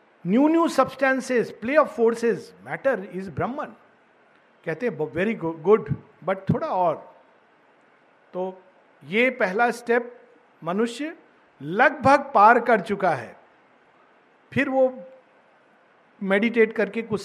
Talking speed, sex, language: 105 wpm, male, Hindi